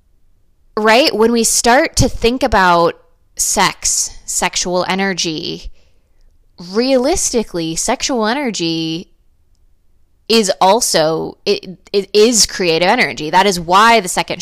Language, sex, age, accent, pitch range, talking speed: English, female, 20-39, American, 165-200 Hz, 105 wpm